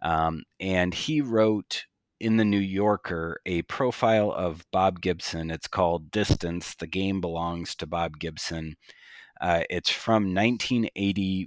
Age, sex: 30-49, male